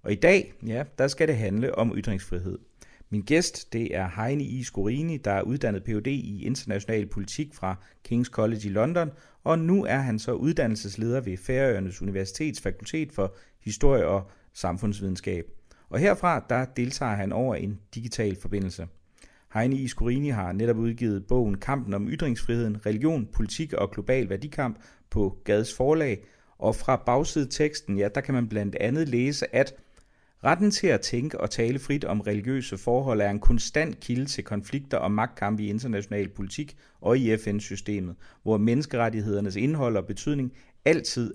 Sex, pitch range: male, 100-135 Hz